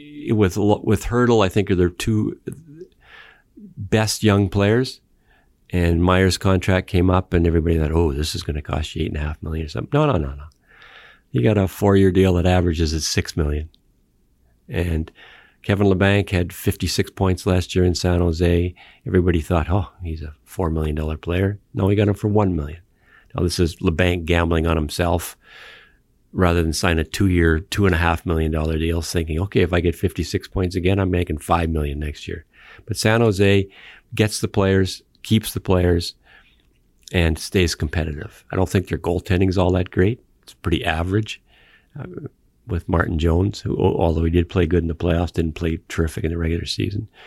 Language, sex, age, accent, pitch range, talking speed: English, male, 50-69, American, 80-100 Hz, 185 wpm